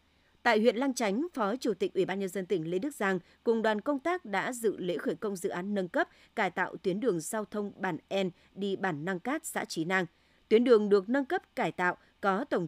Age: 20-39